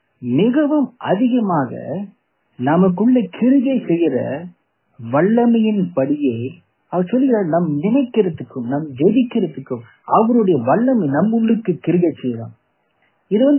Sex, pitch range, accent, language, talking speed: male, 145-230 Hz, Indian, English, 80 wpm